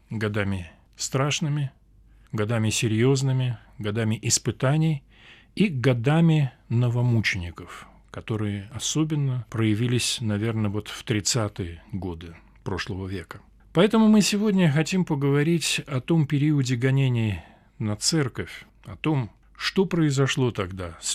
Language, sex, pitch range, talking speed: Russian, male, 105-140 Hz, 100 wpm